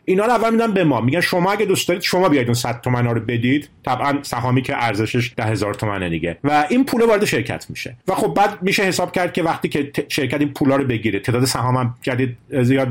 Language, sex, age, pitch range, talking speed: English, male, 40-59, 125-180 Hz, 225 wpm